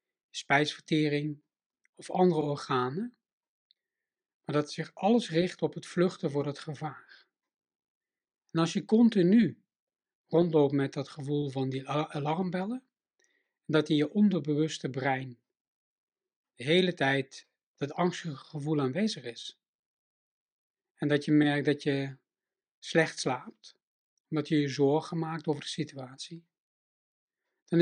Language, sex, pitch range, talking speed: Dutch, male, 145-175 Hz, 120 wpm